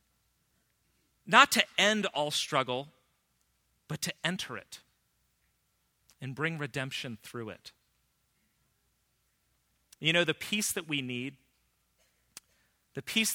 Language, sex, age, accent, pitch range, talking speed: English, male, 40-59, American, 115-160 Hz, 105 wpm